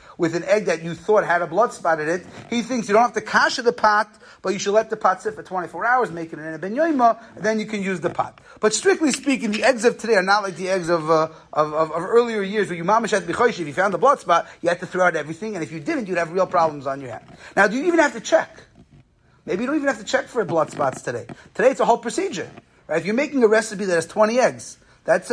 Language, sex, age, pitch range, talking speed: English, male, 30-49, 170-230 Hz, 290 wpm